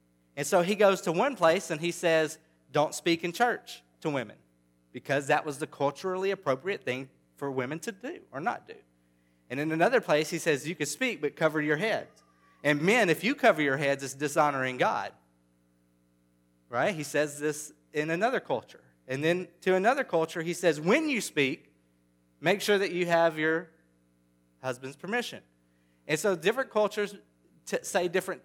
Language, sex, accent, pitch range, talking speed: English, male, American, 130-185 Hz, 175 wpm